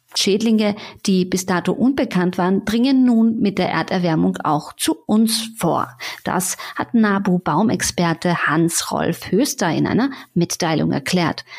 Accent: German